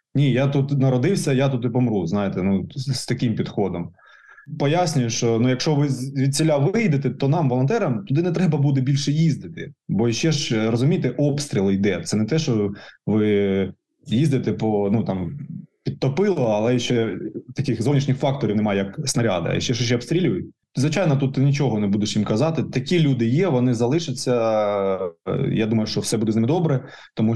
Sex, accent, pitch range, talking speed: male, native, 110-135 Hz, 175 wpm